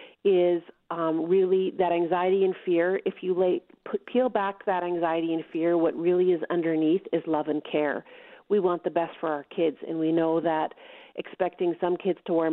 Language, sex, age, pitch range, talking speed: English, female, 40-59, 170-210 Hz, 185 wpm